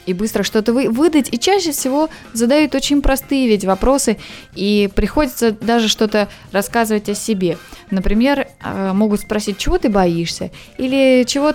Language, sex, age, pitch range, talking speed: Russian, female, 20-39, 200-255 Hz, 140 wpm